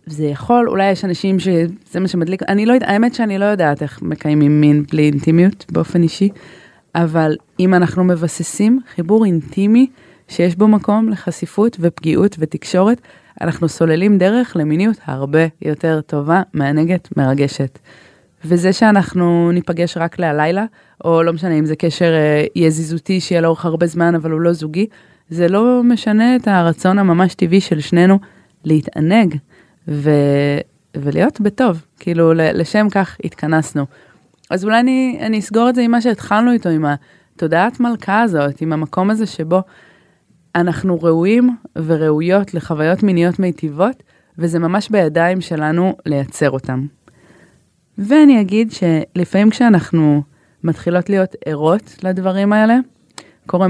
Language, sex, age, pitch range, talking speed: Hebrew, female, 20-39, 160-200 Hz, 135 wpm